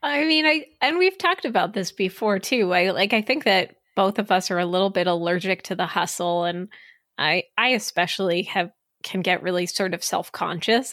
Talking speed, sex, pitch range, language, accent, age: 205 wpm, female, 185-240 Hz, English, American, 20-39